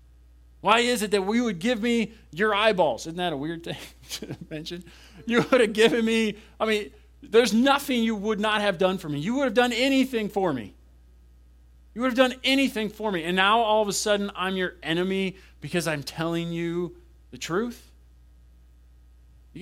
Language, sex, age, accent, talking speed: English, male, 40-59, American, 195 wpm